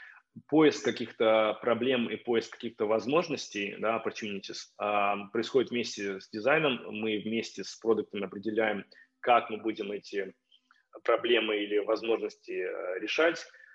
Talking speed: 120 wpm